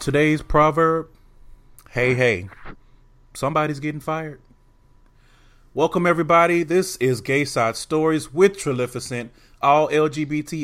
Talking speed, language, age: 100 wpm, English, 30-49